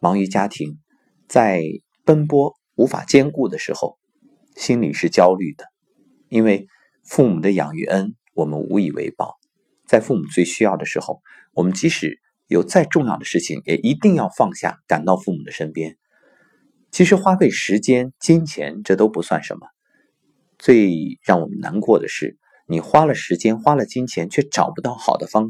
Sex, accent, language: male, native, Chinese